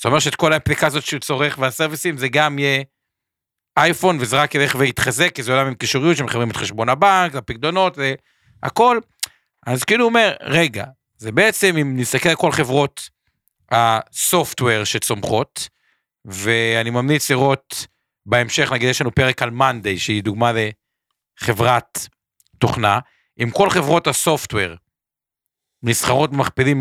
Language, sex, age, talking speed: Hebrew, male, 50-69, 135 wpm